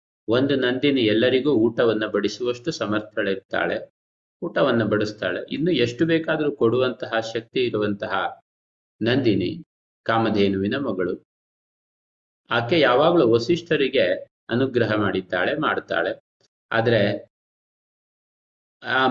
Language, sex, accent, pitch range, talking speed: Kannada, male, native, 105-130 Hz, 80 wpm